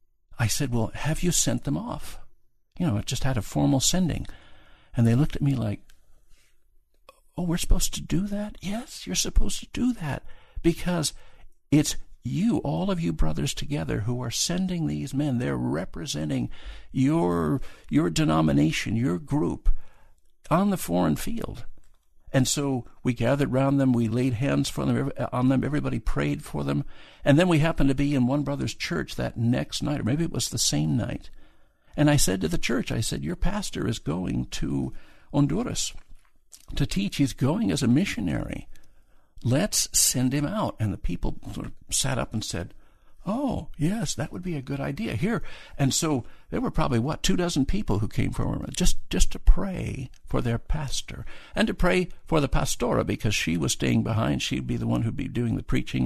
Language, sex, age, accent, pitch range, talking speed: English, male, 60-79, American, 105-150 Hz, 190 wpm